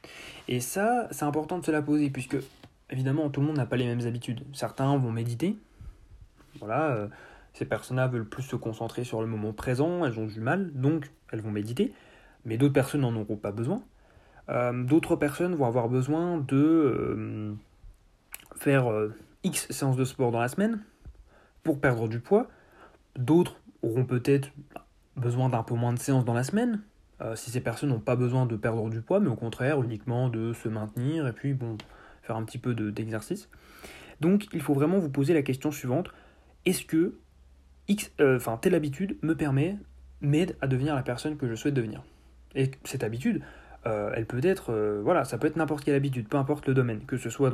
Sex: male